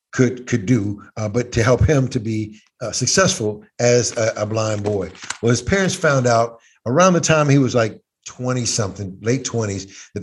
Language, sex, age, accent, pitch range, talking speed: English, male, 50-69, American, 120-165 Hz, 195 wpm